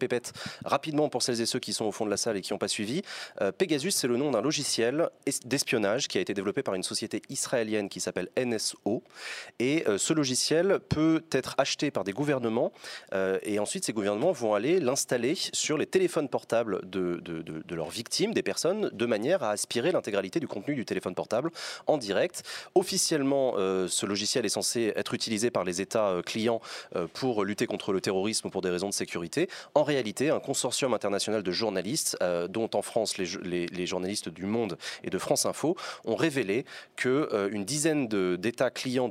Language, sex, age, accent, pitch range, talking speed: French, male, 30-49, French, 95-135 Hz, 195 wpm